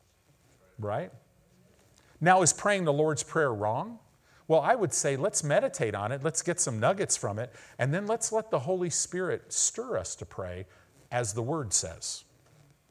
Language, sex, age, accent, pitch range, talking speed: English, male, 40-59, American, 105-155 Hz, 170 wpm